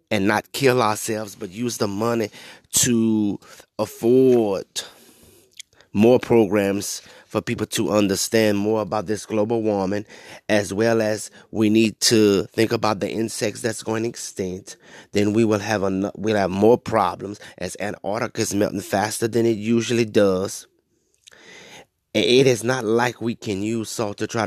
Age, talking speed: 30-49, 150 wpm